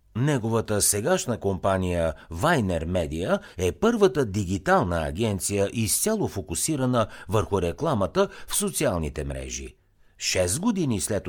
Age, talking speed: 60-79, 100 wpm